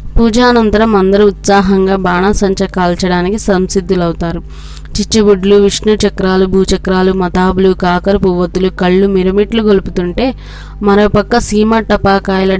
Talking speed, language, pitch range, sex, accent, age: 90 wpm, Telugu, 185-210 Hz, female, native, 20-39